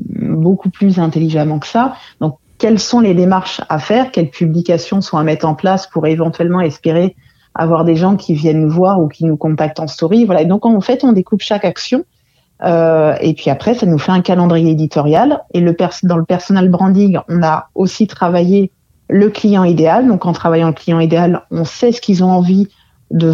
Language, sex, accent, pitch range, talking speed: French, female, French, 160-195 Hz, 205 wpm